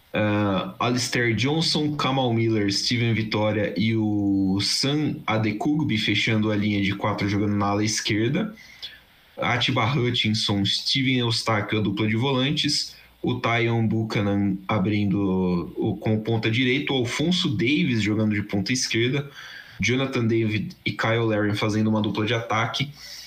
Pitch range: 105-135 Hz